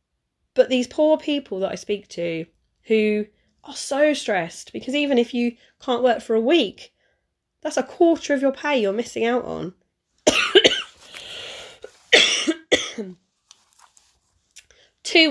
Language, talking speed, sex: English, 125 wpm, female